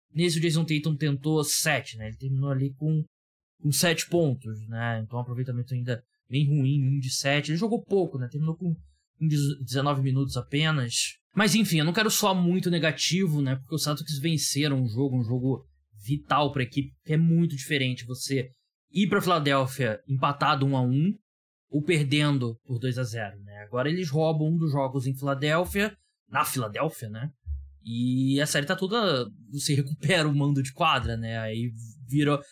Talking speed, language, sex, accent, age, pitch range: 180 wpm, Portuguese, male, Brazilian, 20-39, 125-155 Hz